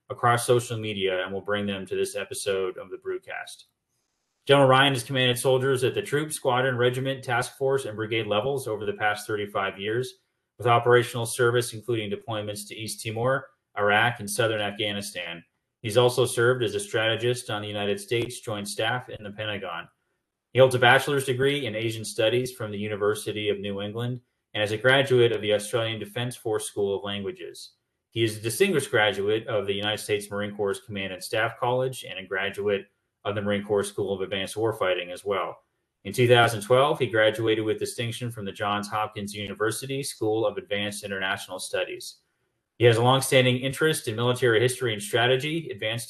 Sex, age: male, 30-49